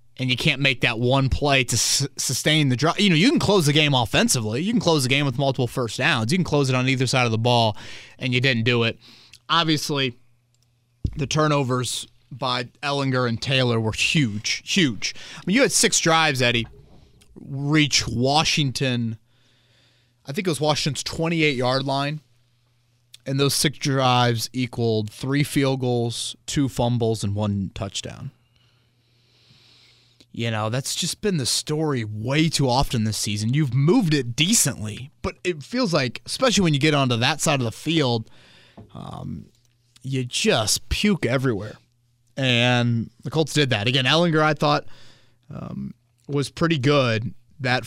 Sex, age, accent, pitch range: male, 30-49, American, 120-145 Hz